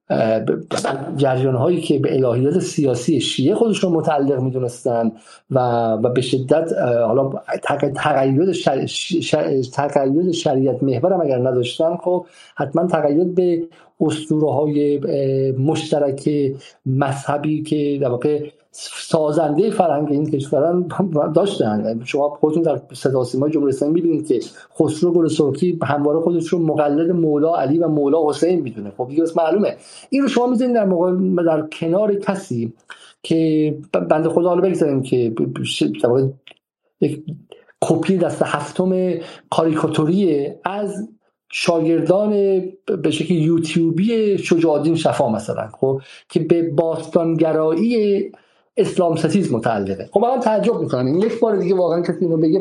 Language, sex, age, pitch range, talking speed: Persian, male, 50-69, 145-185 Hz, 125 wpm